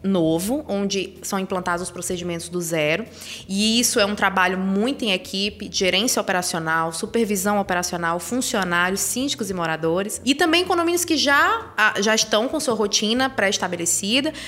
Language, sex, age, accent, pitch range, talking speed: Portuguese, female, 20-39, Brazilian, 200-280 Hz, 145 wpm